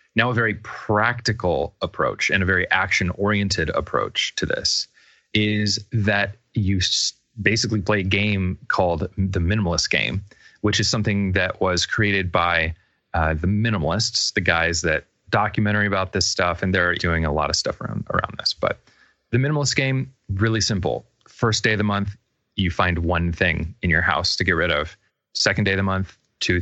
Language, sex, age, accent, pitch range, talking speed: English, male, 30-49, American, 90-110 Hz, 175 wpm